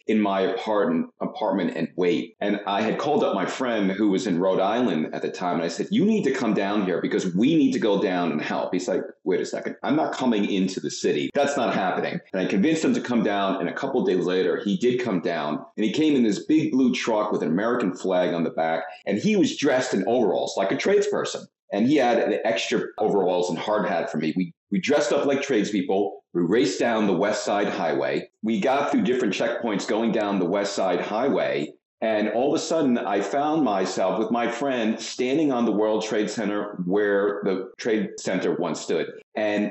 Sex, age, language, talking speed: male, 40-59, English, 230 wpm